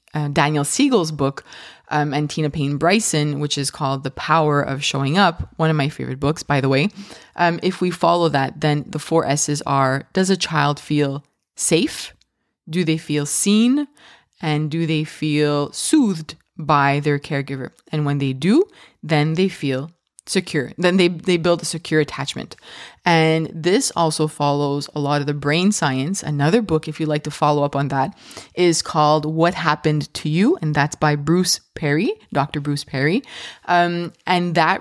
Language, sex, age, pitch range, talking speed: English, female, 20-39, 145-180 Hz, 180 wpm